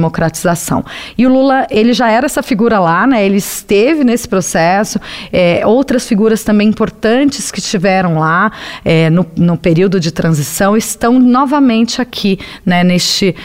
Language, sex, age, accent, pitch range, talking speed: Portuguese, female, 40-59, Brazilian, 170-225 Hz, 150 wpm